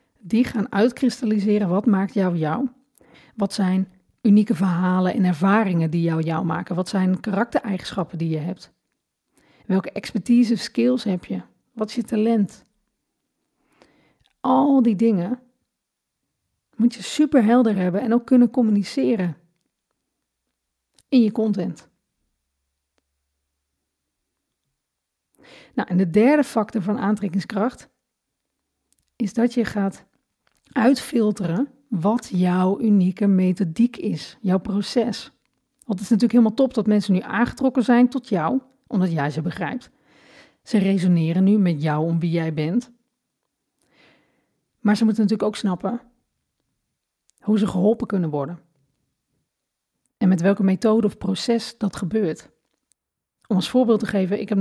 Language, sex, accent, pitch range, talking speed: Dutch, female, Dutch, 185-235 Hz, 130 wpm